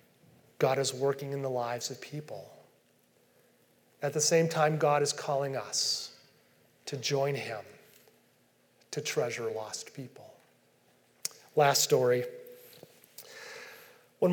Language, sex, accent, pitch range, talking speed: English, male, American, 165-220 Hz, 110 wpm